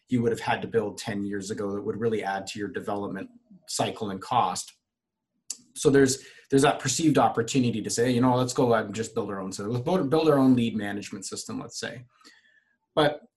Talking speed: 220 wpm